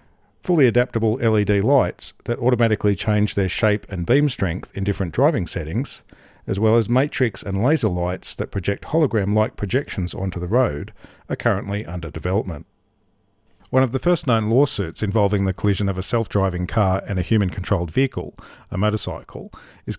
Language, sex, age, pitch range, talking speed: English, male, 40-59, 95-120 Hz, 160 wpm